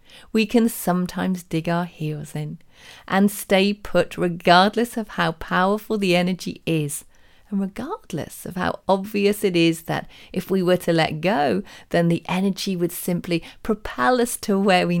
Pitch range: 165-215 Hz